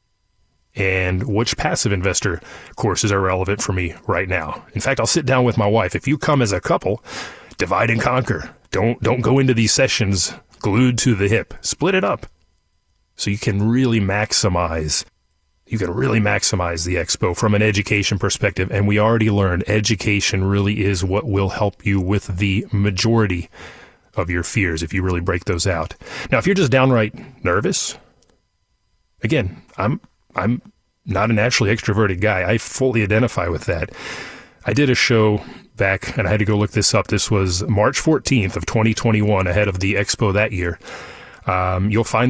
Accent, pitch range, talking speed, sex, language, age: American, 95-115 Hz, 180 wpm, male, English, 30-49